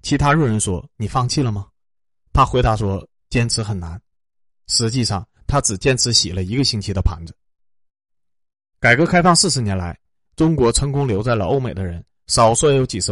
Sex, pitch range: male, 95-135 Hz